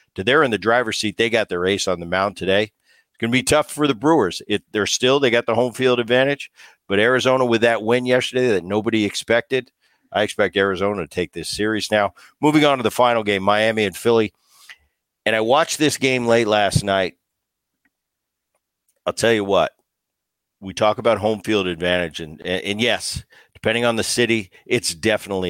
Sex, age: male, 50-69